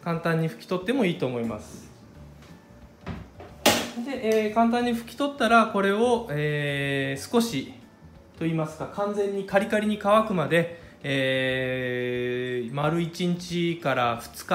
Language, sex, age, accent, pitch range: Japanese, male, 20-39, native, 135-205 Hz